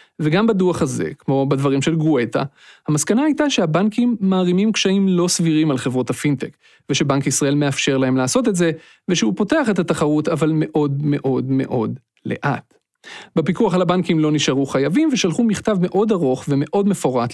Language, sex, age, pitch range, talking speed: Hebrew, male, 40-59, 140-200 Hz, 155 wpm